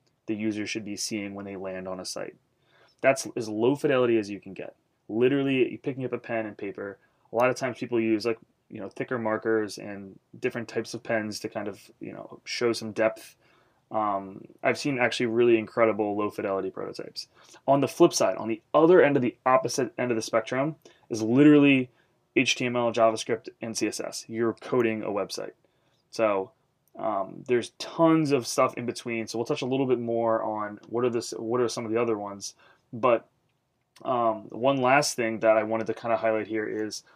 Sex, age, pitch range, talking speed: male, 20-39, 110-130 Hz, 200 wpm